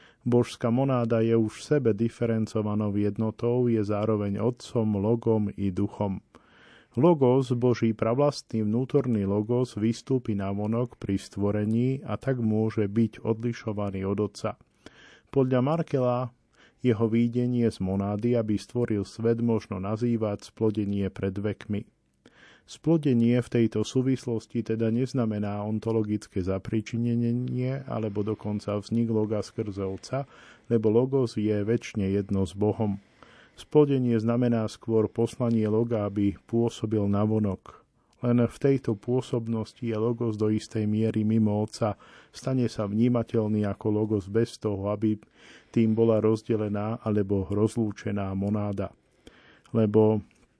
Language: Slovak